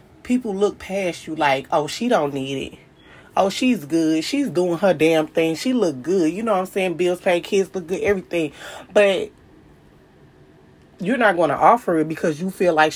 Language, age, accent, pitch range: English, 20-39, American, 155-215 Hz